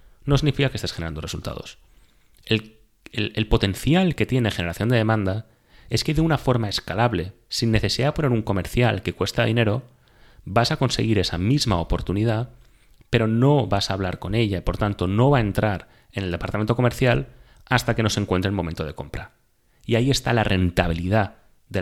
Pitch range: 90-120 Hz